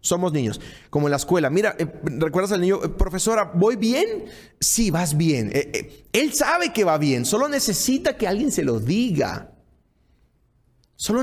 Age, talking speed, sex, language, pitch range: 30-49, 175 wpm, male, Spanish, 125-180 Hz